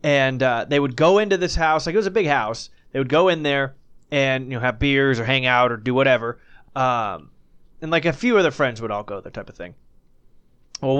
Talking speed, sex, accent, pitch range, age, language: 245 wpm, male, American, 120-145 Hz, 20-39, English